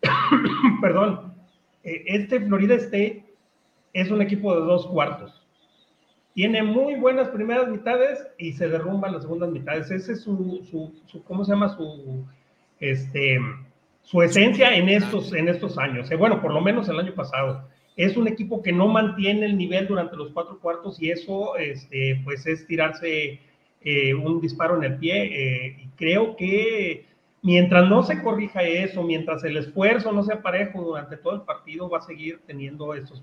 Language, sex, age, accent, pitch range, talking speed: Spanish, male, 40-59, Mexican, 140-205 Hz, 170 wpm